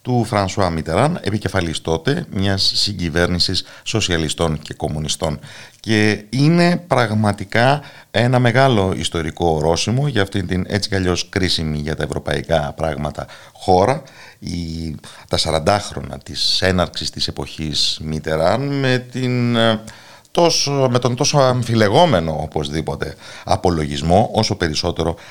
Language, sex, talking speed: Greek, male, 105 wpm